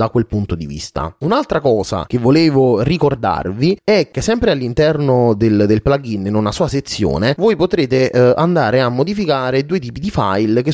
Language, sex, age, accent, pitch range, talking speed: Italian, male, 30-49, native, 105-150 Hz, 175 wpm